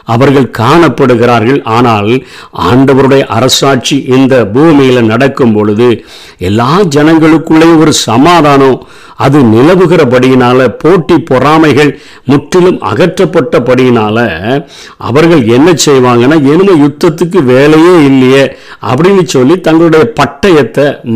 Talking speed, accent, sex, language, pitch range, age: 85 wpm, native, male, Tamil, 120-150 Hz, 50-69